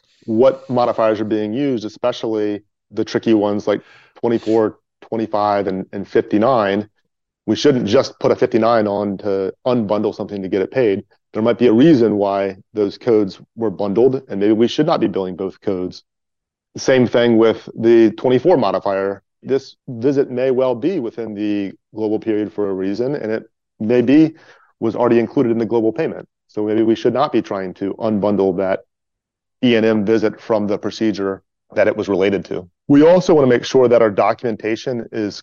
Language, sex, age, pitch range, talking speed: English, male, 30-49, 105-125 Hz, 180 wpm